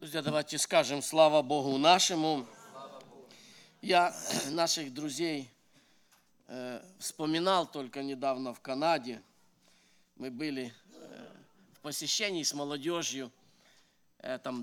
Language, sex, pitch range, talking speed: English, male, 155-220 Hz, 85 wpm